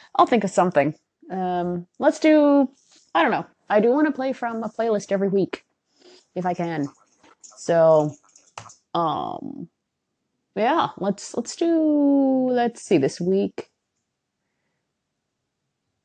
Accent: American